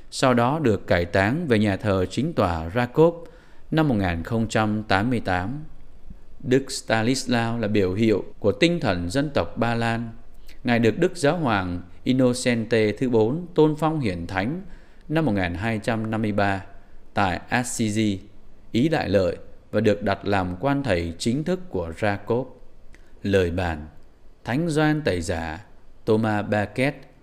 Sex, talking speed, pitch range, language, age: male, 135 wpm, 100-140 Hz, Vietnamese, 20-39